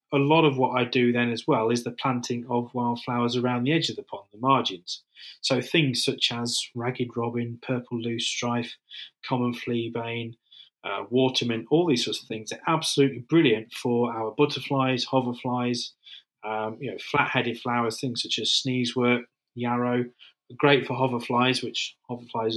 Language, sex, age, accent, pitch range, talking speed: English, male, 30-49, British, 115-130 Hz, 170 wpm